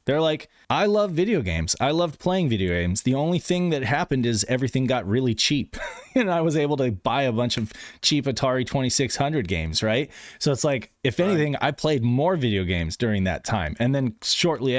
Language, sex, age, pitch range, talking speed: English, male, 30-49, 100-135 Hz, 205 wpm